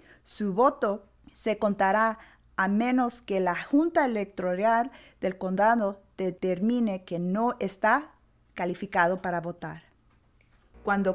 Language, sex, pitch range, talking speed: English, female, 175-225 Hz, 110 wpm